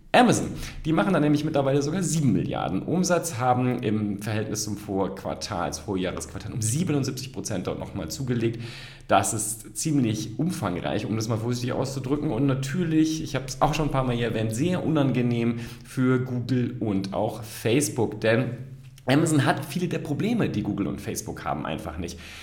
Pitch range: 105-145 Hz